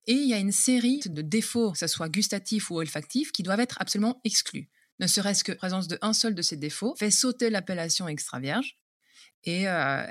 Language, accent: French, French